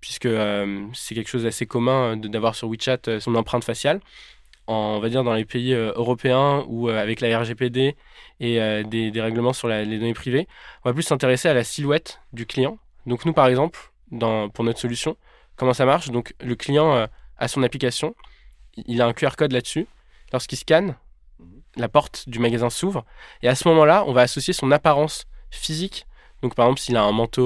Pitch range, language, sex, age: 115-150 Hz, French, male, 20-39